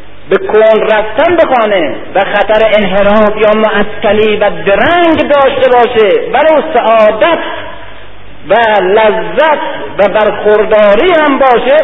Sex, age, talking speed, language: male, 50-69, 105 wpm, Persian